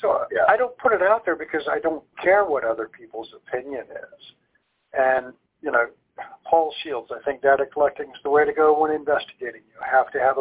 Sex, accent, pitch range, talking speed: male, American, 130-165 Hz, 210 wpm